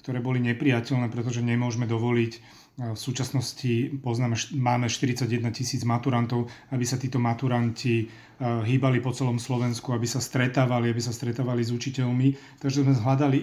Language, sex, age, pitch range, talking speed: Slovak, male, 40-59, 120-140 Hz, 145 wpm